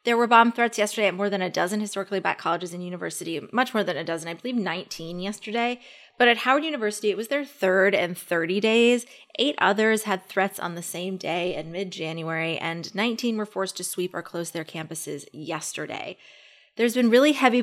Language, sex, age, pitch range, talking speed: English, female, 20-39, 180-230 Hz, 205 wpm